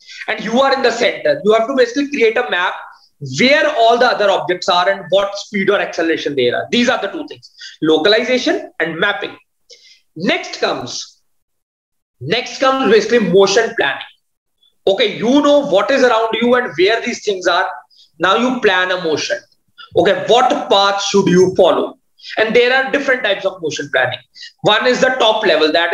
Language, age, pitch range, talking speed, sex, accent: English, 20-39, 190-255 Hz, 180 wpm, male, Indian